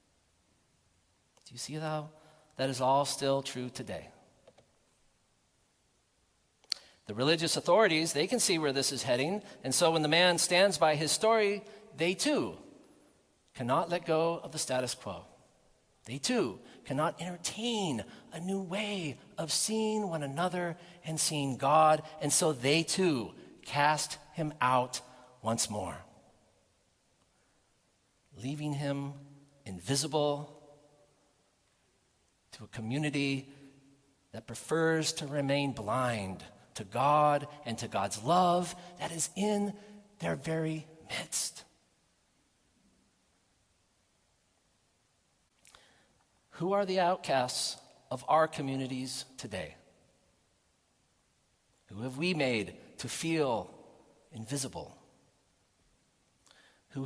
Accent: American